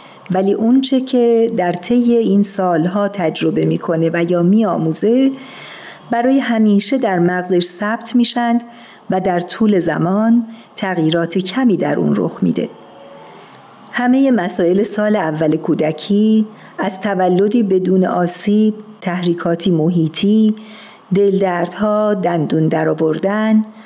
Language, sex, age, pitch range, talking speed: Persian, female, 50-69, 175-220 Hz, 110 wpm